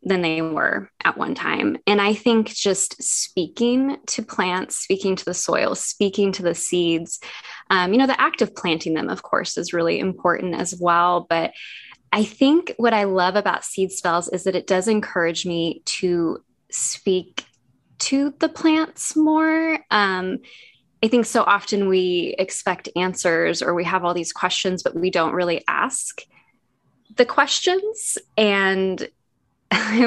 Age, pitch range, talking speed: 10-29, 180-225 Hz, 160 wpm